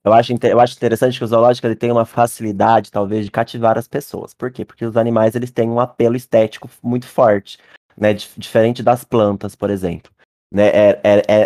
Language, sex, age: Portuguese, male, 20-39